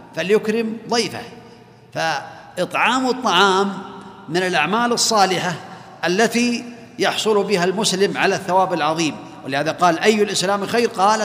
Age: 50-69